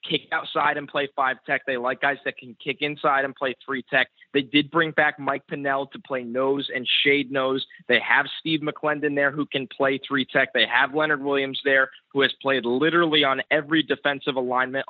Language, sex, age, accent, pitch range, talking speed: English, male, 20-39, American, 130-150 Hz, 210 wpm